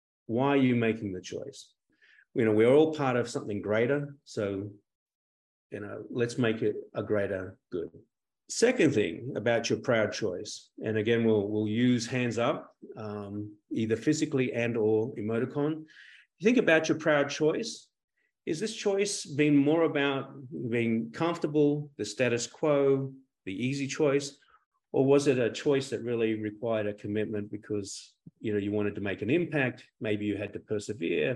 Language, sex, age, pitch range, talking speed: English, male, 40-59, 110-150 Hz, 165 wpm